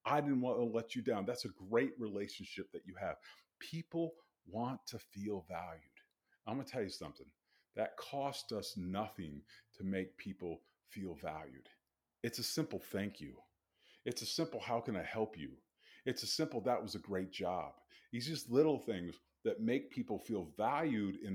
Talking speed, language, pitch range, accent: 185 wpm, English, 95-125 Hz, American